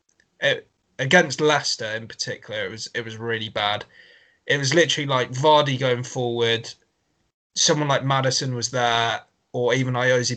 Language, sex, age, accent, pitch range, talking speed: English, male, 20-39, British, 125-165 Hz, 150 wpm